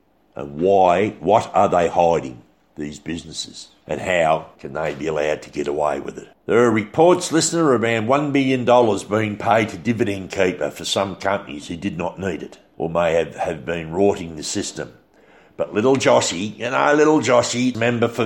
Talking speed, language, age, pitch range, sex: 180 wpm, English, 60-79, 85-115 Hz, male